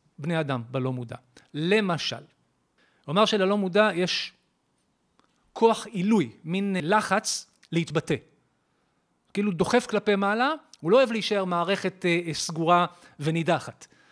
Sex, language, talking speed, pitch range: male, Hebrew, 105 wpm, 150-200 Hz